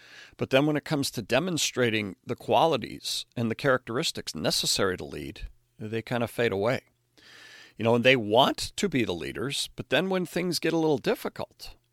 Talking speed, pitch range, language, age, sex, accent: 185 wpm, 110-140 Hz, English, 50-69, male, American